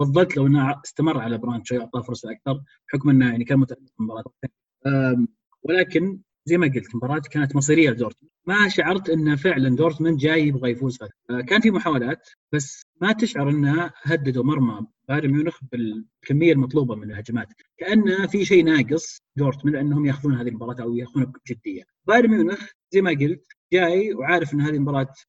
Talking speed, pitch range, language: 165 wpm, 130-170 Hz, Arabic